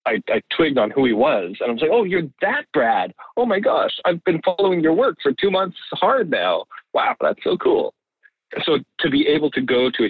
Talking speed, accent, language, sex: 230 wpm, American, English, male